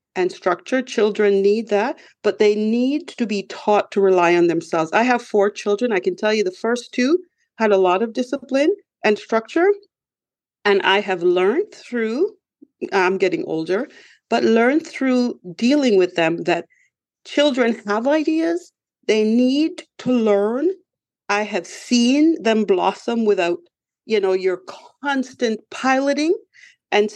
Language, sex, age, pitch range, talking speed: English, female, 40-59, 185-285 Hz, 150 wpm